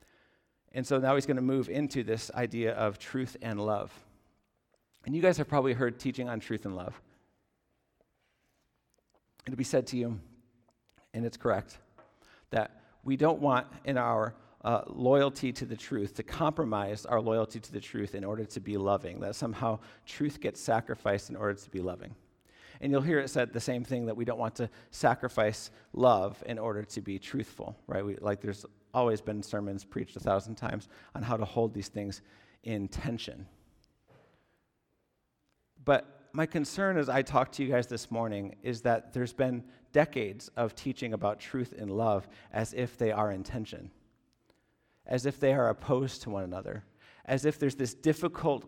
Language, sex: English, male